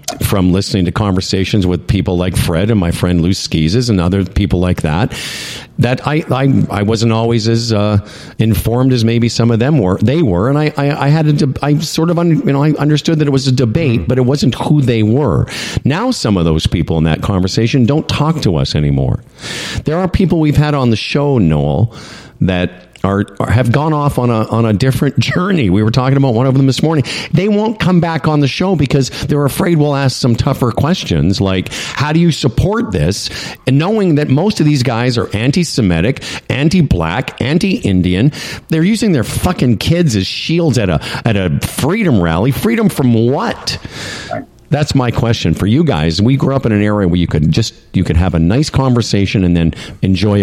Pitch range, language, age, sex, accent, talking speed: 100-150 Hz, English, 50-69, male, American, 210 wpm